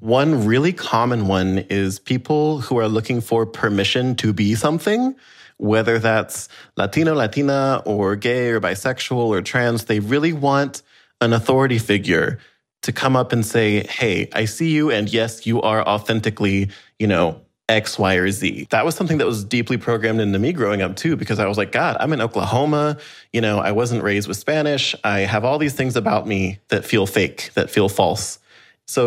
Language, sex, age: English, male, 30-49